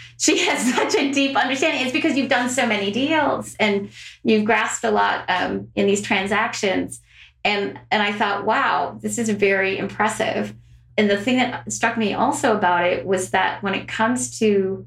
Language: English